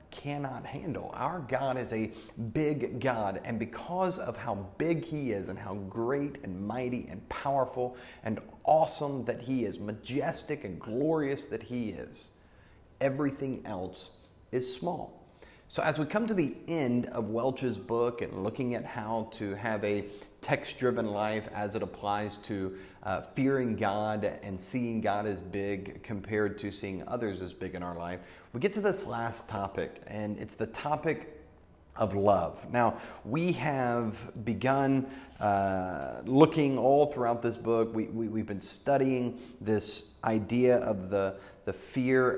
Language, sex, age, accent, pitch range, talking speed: English, male, 30-49, American, 100-130 Hz, 155 wpm